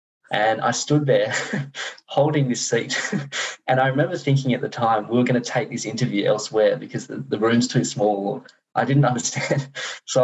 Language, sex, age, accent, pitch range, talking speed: English, male, 10-29, Australian, 105-130 Hz, 190 wpm